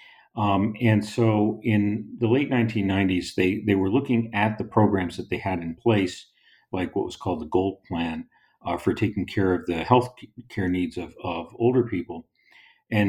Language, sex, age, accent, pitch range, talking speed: English, male, 50-69, American, 95-115 Hz, 185 wpm